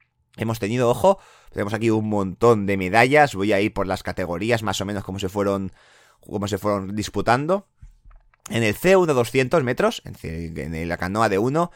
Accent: Spanish